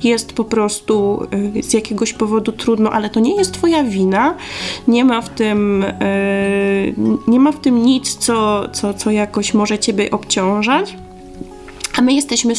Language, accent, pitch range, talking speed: Polish, native, 200-245 Hz, 155 wpm